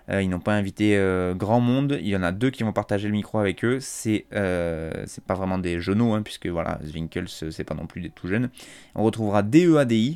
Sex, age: male, 20-39